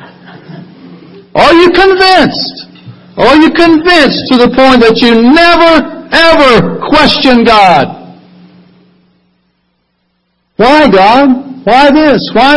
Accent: American